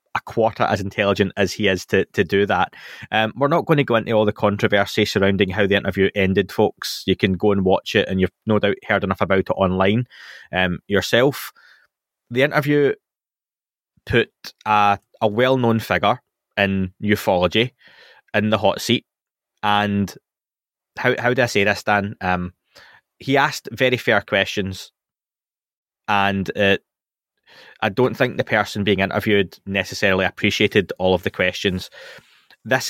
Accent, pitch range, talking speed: British, 95-110 Hz, 160 wpm